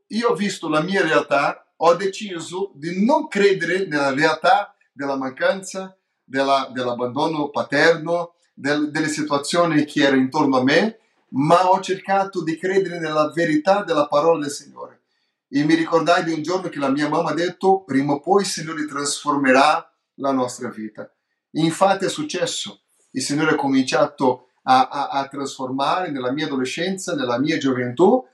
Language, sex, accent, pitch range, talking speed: Italian, male, Brazilian, 145-195 Hz, 155 wpm